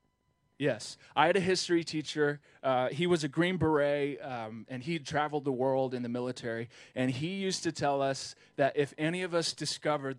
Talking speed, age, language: 195 wpm, 20-39, English